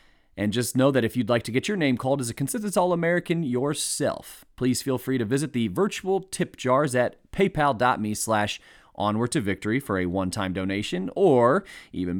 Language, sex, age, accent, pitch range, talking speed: English, male, 30-49, American, 105-145 Hz, 175 wpm